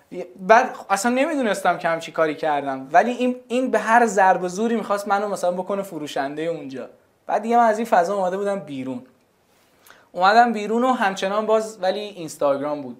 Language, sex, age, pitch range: Persian, male, 20-39, 165-220 Hz